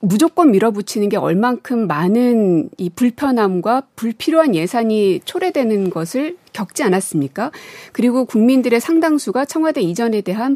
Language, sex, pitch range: Korean, female, 195-290 Hz